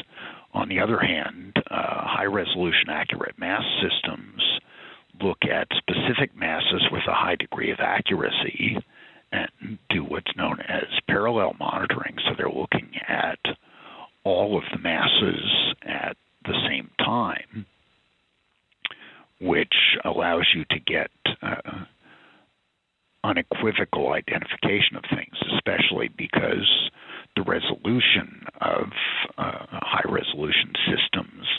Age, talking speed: 60-79, 105 wpm